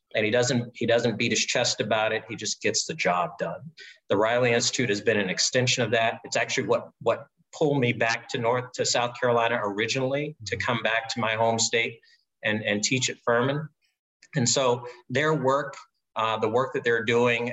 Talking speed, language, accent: 200 wpm, English, American